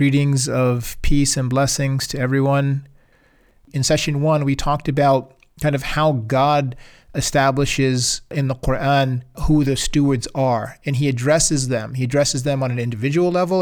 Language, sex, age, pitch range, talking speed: English, male, 30-49, 135-155 Hz, 160 wpm